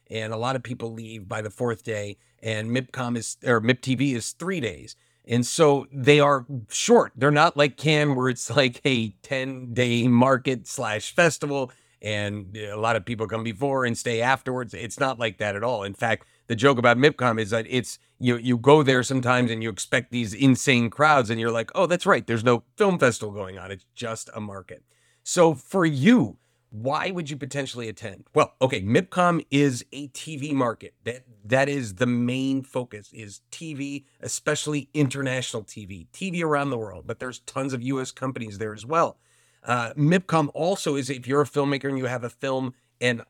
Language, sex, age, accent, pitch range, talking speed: English, male, 40-59, American, 115-140 Hz, 195 wpm